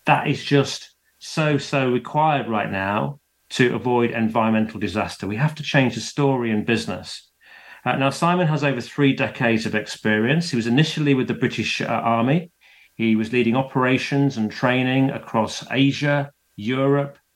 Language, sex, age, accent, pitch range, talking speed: English, male, 40-59, British, 115-145 Hz, 160 wpm